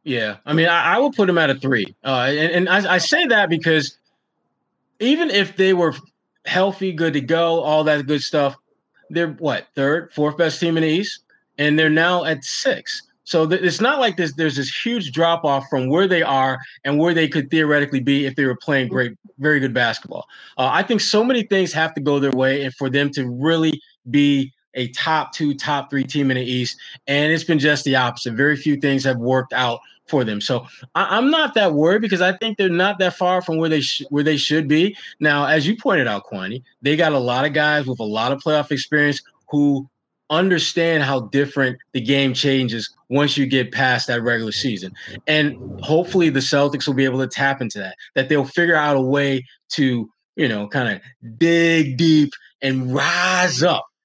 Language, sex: English, male